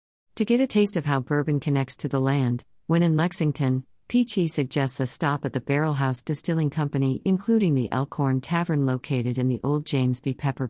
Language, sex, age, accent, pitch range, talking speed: English, female, 50-69, American, 125-155 Hz, 195 wpm